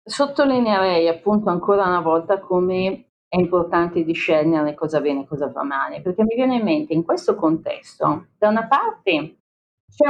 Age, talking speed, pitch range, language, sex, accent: 40-59, 160 wpm, 160-210 Hz, Italian, female, native